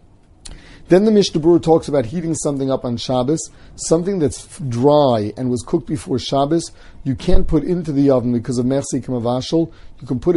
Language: English